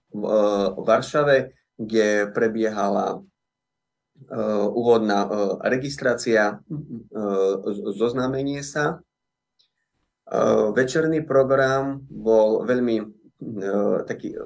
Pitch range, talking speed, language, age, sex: 105-130 Hz, 55 wpm, Slovak, 30-49, male